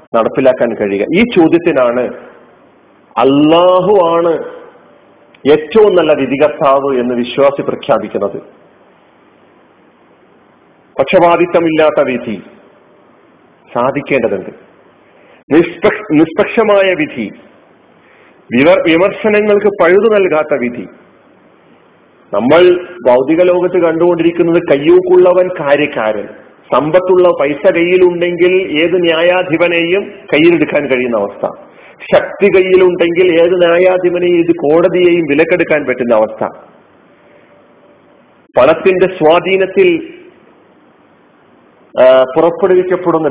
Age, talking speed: 40-59, 65 wpm